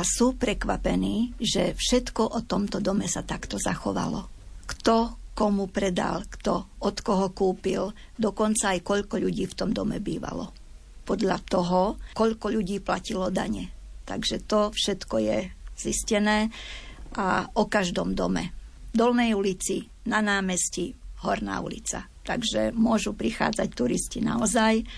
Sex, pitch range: female, 195-225 Hz